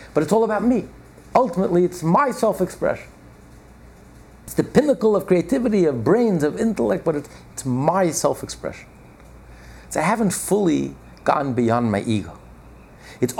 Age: 60-79